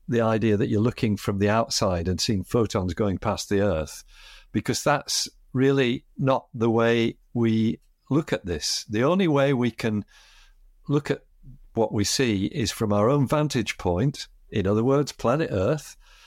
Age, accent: 50-69, British